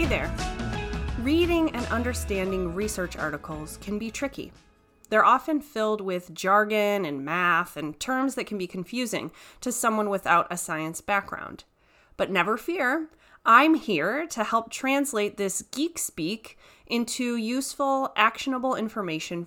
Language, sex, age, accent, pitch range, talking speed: English, female, 30-49, American, 180-250 Hz, 135 wpm